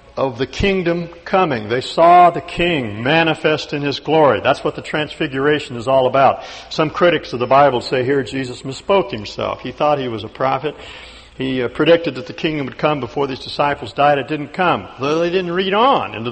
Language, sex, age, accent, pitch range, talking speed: English, male, 60-79, American, 105-150 Hz, 200 wpm